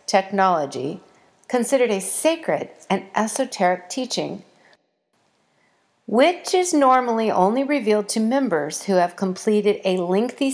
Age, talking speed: 50-69, 110 wpm